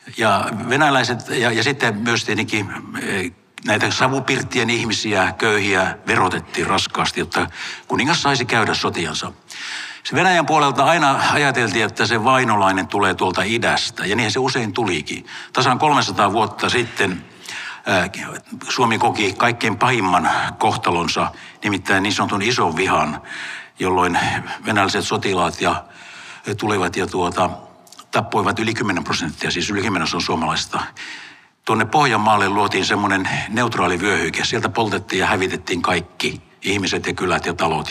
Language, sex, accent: Finnish, male, native